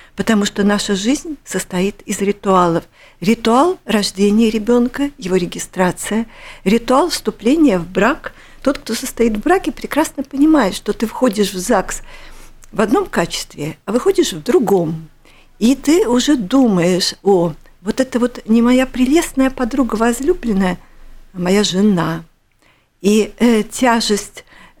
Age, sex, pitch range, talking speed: 50-69, female, 200-260 Hz, 130 wpm